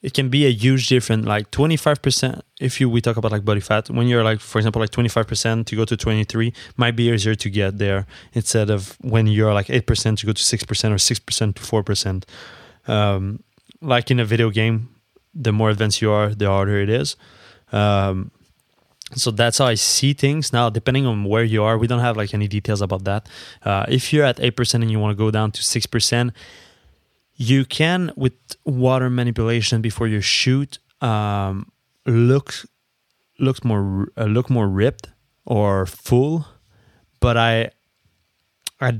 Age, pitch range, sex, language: 20-39, 105-120 Hz, male, English